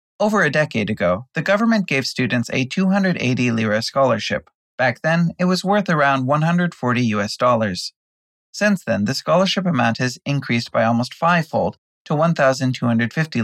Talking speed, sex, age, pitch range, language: 145 wpm, male, 30-49, 120-165 Hz, English